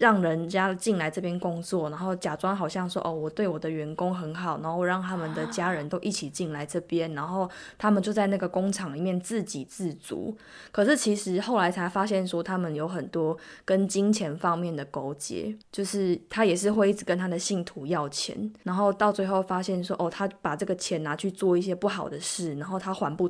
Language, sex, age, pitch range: Chinese, female, 20-39, 165-205 Hz